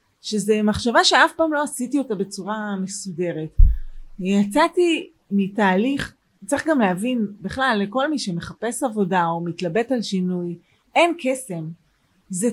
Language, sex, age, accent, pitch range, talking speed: Hebrew, female, 30-49, native, 185-255 Hz, 125 wpm